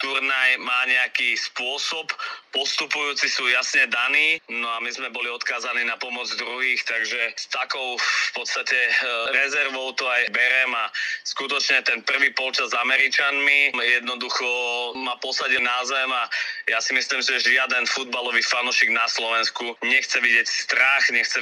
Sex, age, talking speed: male, 30-49, 145 wpm